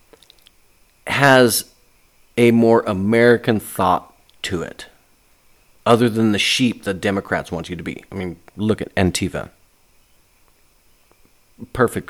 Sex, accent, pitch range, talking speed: male, American, 95-125 Hz, 115 wpm